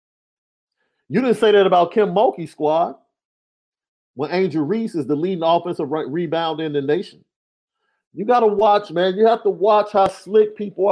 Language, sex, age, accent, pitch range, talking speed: English, male, 40-59, American, 140-200 Hz, 180 wpm